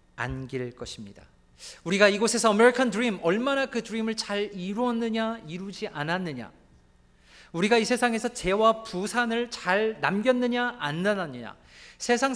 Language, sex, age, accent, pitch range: Korean, male, 40-59, native, 130-225 Hz